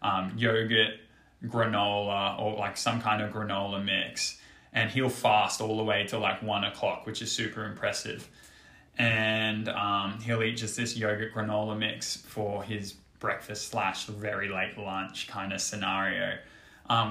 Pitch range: 105-120 Hz